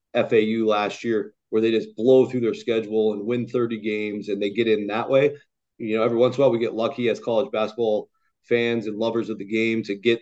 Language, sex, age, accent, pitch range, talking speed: English, male, 30-49, American, 115-130 Hz, 240 wpm